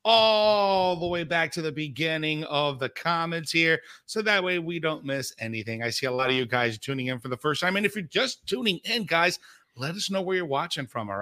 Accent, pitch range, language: American, 125-160 Hz, English